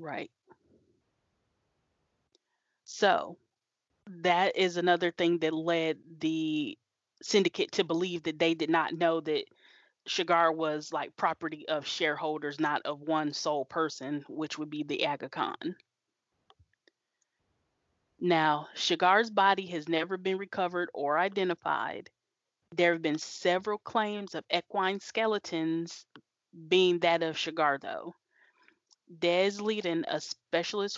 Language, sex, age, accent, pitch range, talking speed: English, female, 30-49, American, 160-185 Hz, 120 wpm